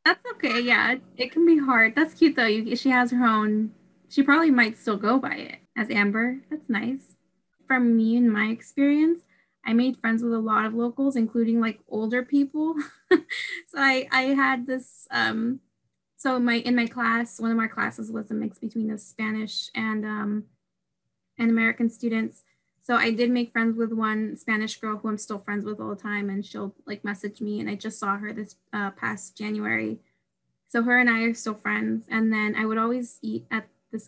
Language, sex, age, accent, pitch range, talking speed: English, female, 10-29, American, 215-250 Hz, 200 wpm